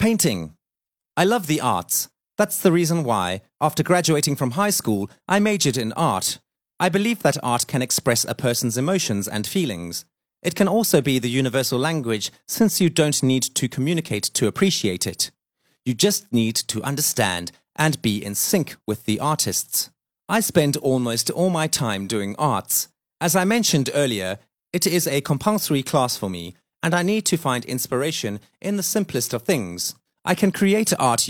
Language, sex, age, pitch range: Chinese, male, 30-49, 115-175 Hz